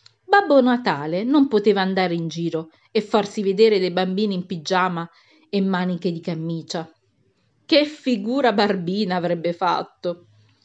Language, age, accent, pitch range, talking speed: Italian, 40-59, native, 160-235 Hz, 130 wpm